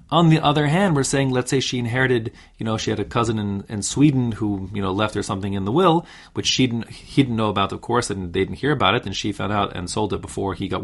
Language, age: English, 30-49